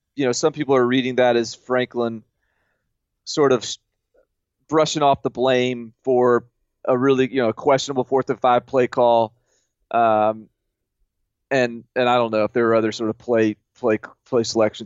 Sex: male